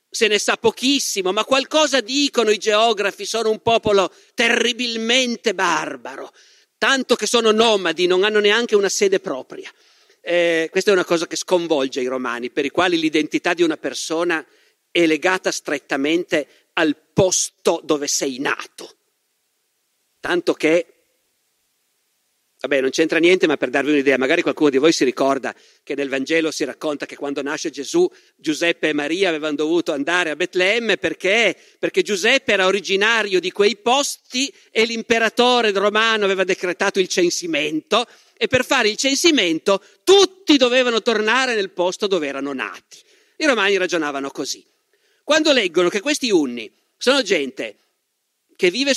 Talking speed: 150 wpm